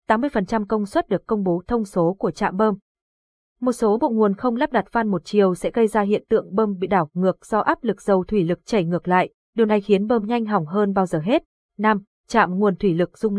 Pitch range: 185-235 Hz